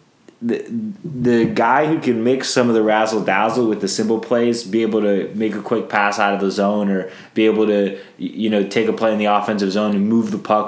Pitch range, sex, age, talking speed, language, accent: 95-110 Hz, male, 20-39, 240 wpm, English, American